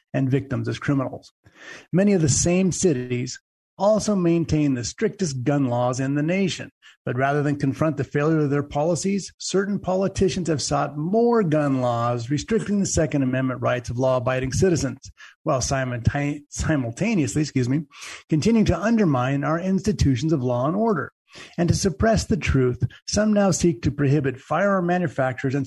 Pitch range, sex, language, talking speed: 130-170 Hz, male, English, 160 wpm